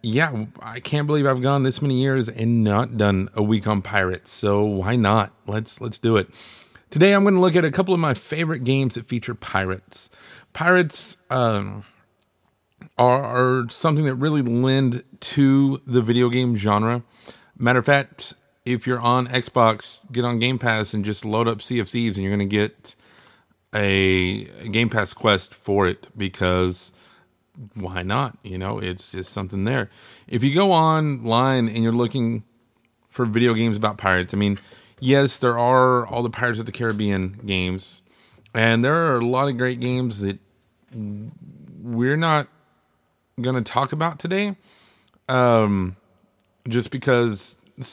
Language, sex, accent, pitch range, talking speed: English, male, American, 105-130 Hz, 170 wpm